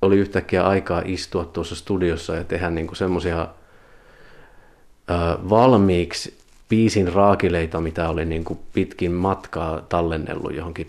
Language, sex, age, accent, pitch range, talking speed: Finnish, male, 30-49, native, 85-100 Hz, 110 wpm